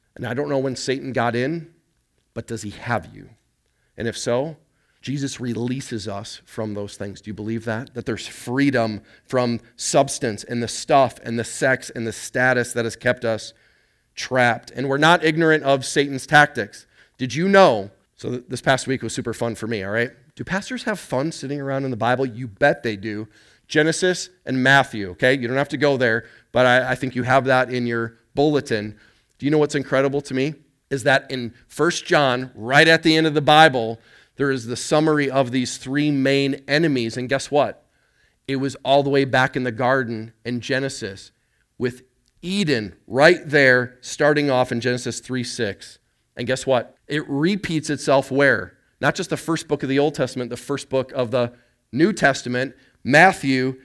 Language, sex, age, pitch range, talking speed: English, male, 30-49, 120-145 Hz, 195 wpm